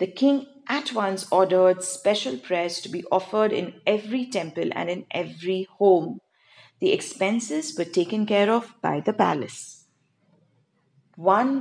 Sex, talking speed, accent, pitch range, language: female, 140 wpm, Indian, 175-255 Hz, English